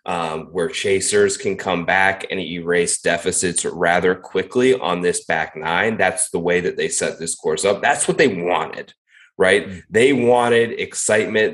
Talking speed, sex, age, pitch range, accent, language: 165 wpm, male, 30-49, 95-145 Hz, American, English